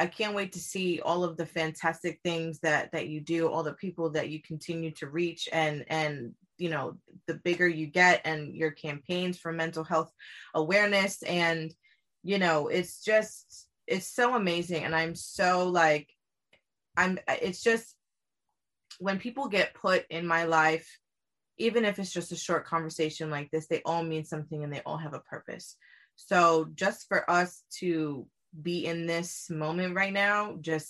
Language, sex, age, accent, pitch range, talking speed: English, female, 20-39, American, 160-185 Hz, 175 wpm